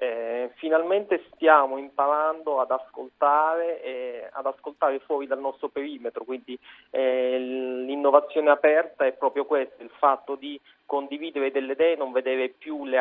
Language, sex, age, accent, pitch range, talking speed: Italian, male, 30-49, native, 130-155 Hz, 145 wpm